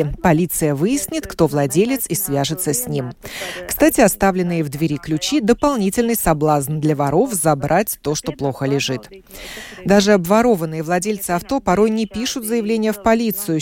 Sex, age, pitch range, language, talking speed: female, 30-49, 155-215 Hz, Russian, 140 wpm